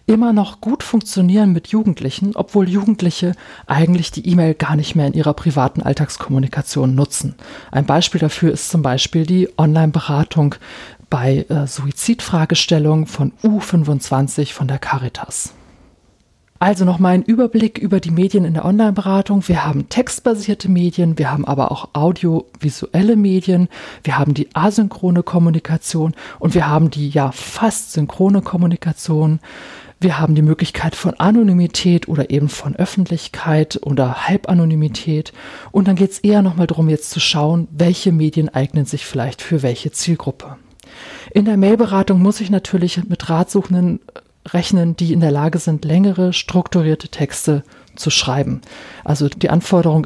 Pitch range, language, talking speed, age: 145-185 Hz, German, 145 wpm, 40-59